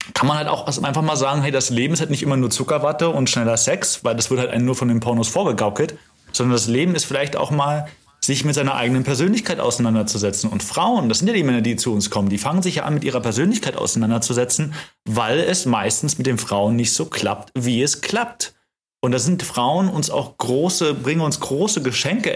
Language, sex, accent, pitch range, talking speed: German, male, German, 115-155 Hz, 230 wpm